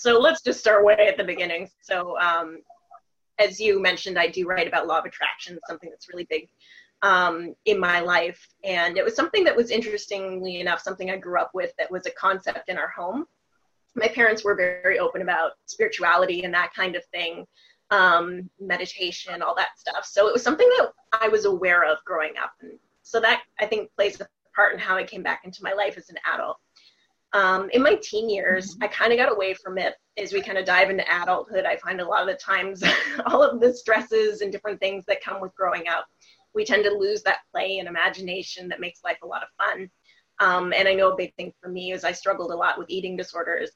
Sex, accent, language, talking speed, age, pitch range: female, American, English, 225 wpm, 20-39, 180-215 Hz